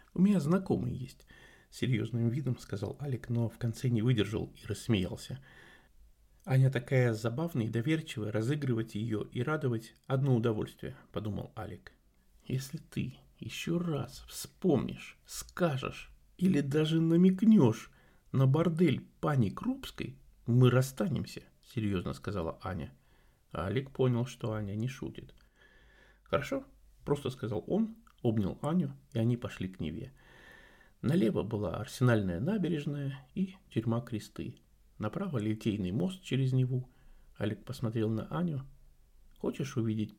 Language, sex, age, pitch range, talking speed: Russian, male, 50-69, 110-150 Hz, 125 wpm